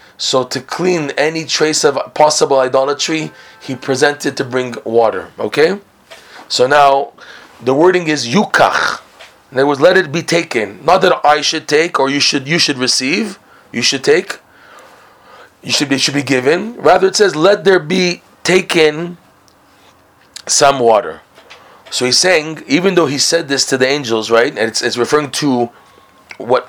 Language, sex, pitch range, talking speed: English, male, 130-170 Hz, 170 wpm